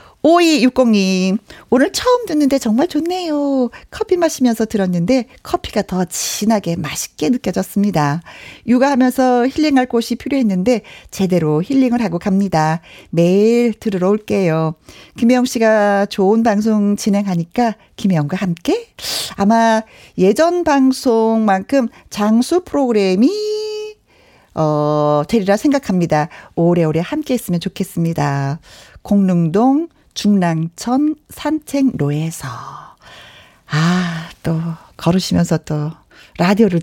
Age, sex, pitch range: 40-59, female, 180-250 Hz